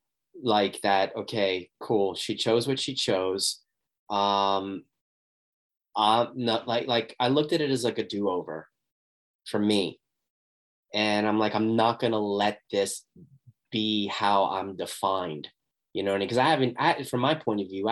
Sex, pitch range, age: male, 100-125 Hz, 30-49